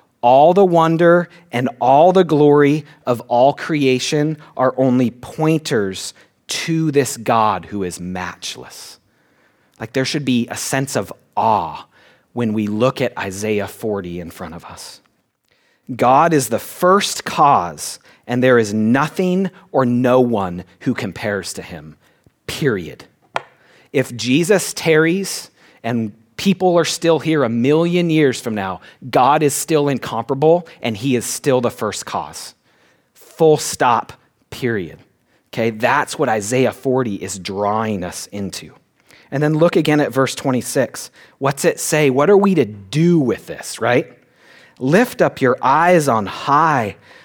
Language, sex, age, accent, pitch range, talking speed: English, male, 30-49, American, 115-160 Hz, 145 wpm